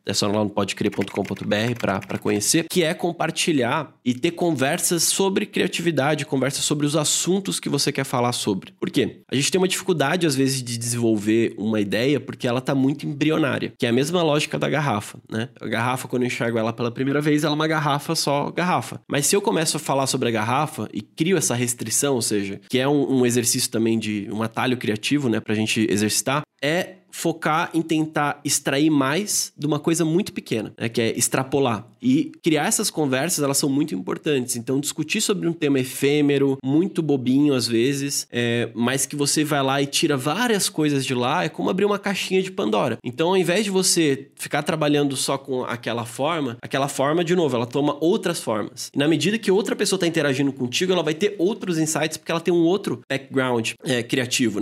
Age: 20-39